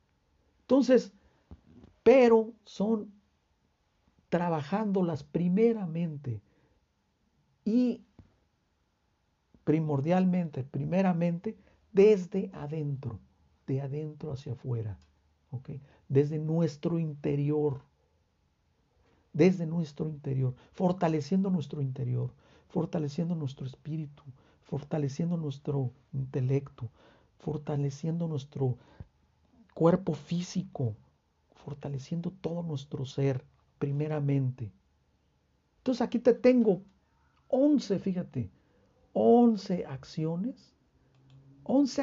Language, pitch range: Spanish, 115-180 Hz